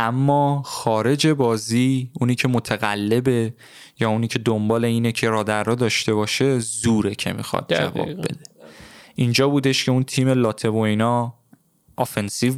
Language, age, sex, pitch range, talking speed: Persian, 20-39, male, 110-135 Hz, 140 wpm